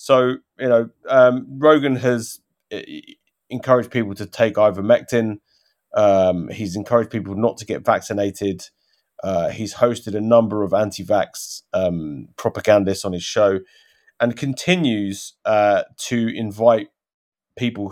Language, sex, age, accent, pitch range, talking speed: English, male, 30-49, British, 105-135 Hz, 120 wpm